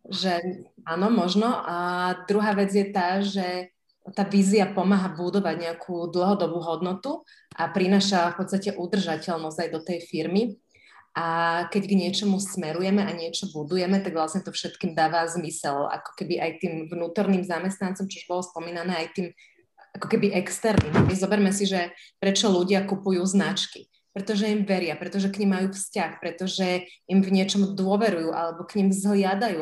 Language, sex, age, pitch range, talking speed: Slovak, female, 30-49, 175-200 Hz, 160 wpm